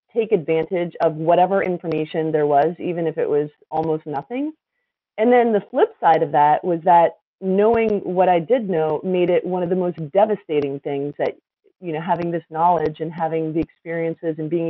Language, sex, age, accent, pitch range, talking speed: English, female, 30-49, American, 160-195 Hz, 190 wpm